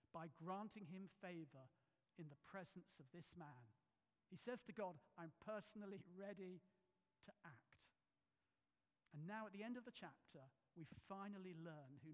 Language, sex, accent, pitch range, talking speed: English, male, British, 150-200 Hz, 155 wpm